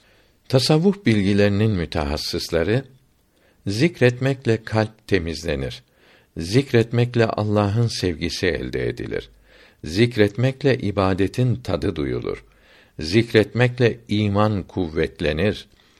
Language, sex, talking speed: Turkish, male, 70 wpm